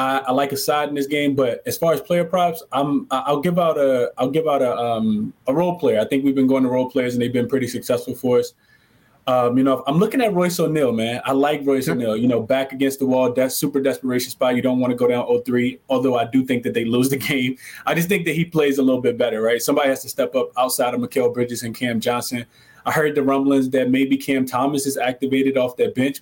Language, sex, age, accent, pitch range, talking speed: English, male, 20-39, American, 125-155 Hz, 270 wpm